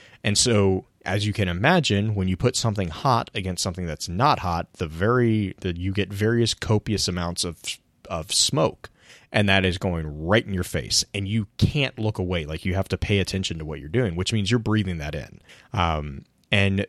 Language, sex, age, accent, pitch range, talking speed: English, male, 30-49, American, 85-110 Hz, 205 wpm